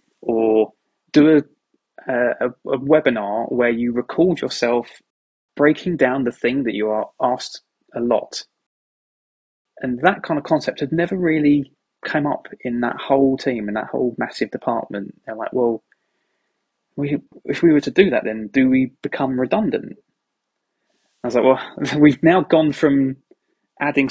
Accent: British